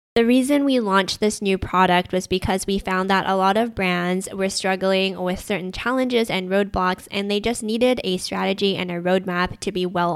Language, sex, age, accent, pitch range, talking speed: English, female, 10-29, American, 180-215 Hz, 205 wpm